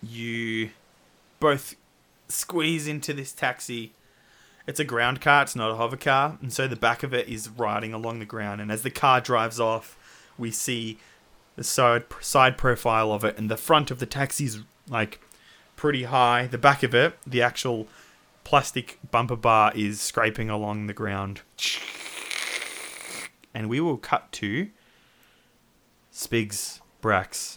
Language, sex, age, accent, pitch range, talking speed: English, male, 20-39, Australian, 105-125 Hz, 155 wpm